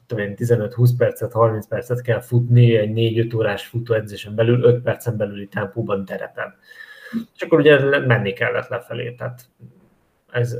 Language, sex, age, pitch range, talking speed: Hungarian, male, 20-39, 110-125 Hz, 135 wpm